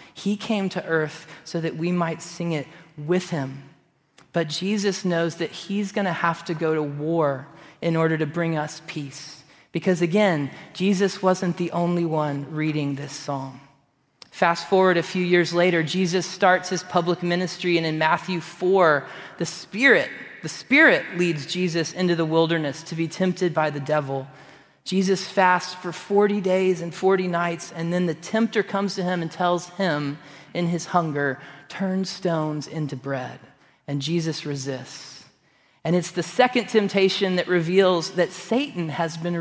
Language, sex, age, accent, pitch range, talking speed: English, male, 30-49, American, 155-190 Hz, 165 wpm